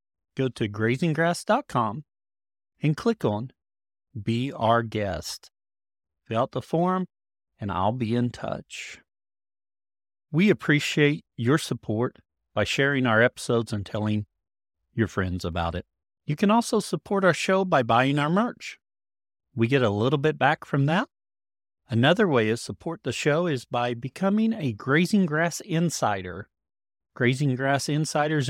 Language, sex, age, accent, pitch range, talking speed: English, male, 40-59, American, 100-155 Hz, 140 wpm